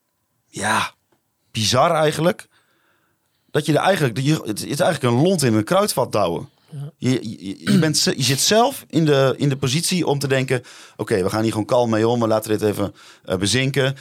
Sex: male